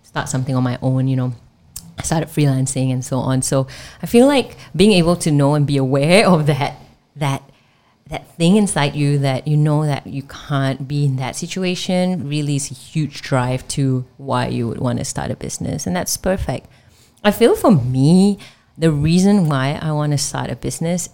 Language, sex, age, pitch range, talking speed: English, female, 30-49, 130-155 Hz, 200 wpm